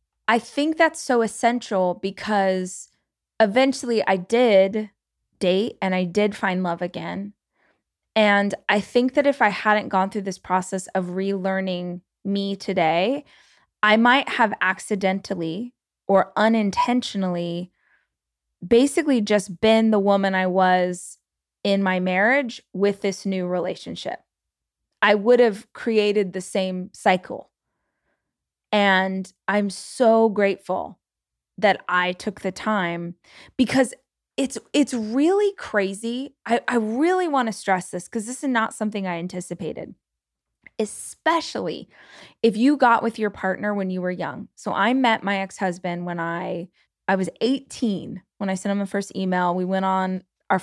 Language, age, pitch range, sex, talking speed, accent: English, 20-39, 185-225 Hz, female, 140 wpm, American